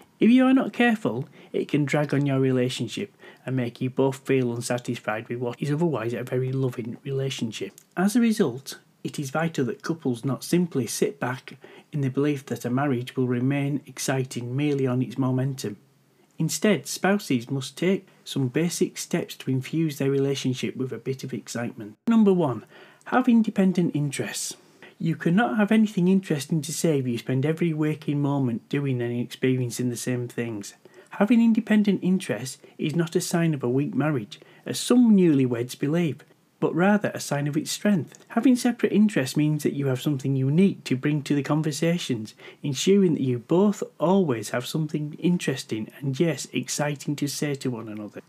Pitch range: 130-185 Hz